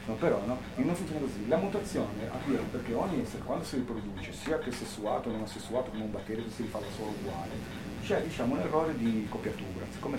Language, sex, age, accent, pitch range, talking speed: Italian, male, 40-59, native, 100-125 Hz, 210 wpm